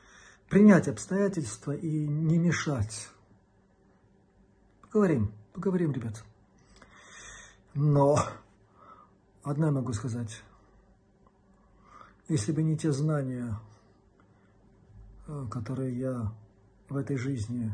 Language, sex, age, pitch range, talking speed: Russian, male, 50-69, 100-145 Hz, 75 wpm